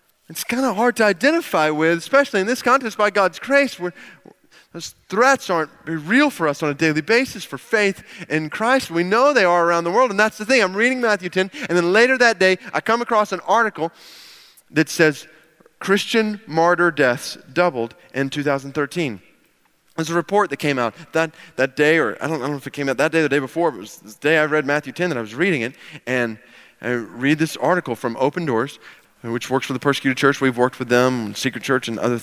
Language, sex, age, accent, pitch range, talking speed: English, male, 30-49, American, 120-170 Hz, 225 wpm